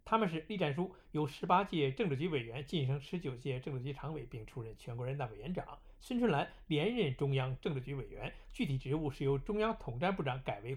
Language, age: Chinese, 60-79